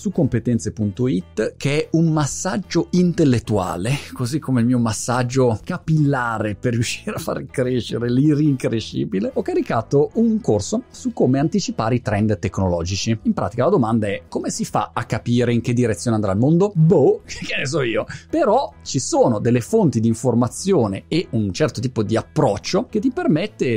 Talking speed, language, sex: 165 wpm, Italian, male